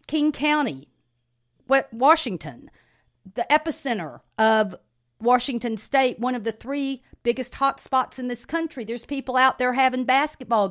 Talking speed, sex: 130 wpm, female